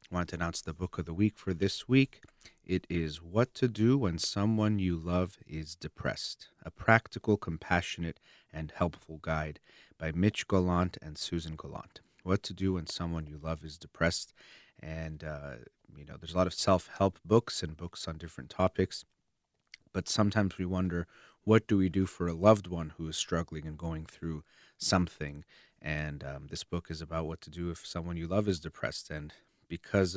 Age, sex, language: 30-49, male, English